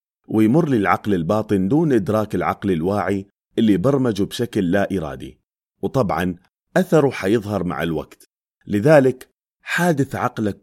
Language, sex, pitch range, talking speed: Arabic, male, 90-125 Hz, 115 wpm